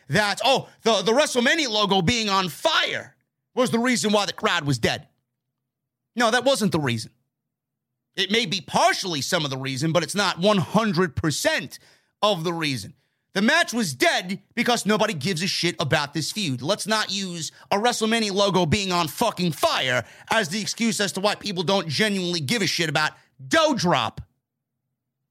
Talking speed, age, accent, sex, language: 175 wpm, 30-49, American, male, English